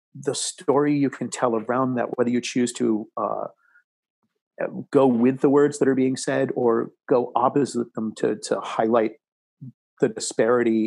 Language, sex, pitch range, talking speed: English, male, 110-130 Hz, 160 wpm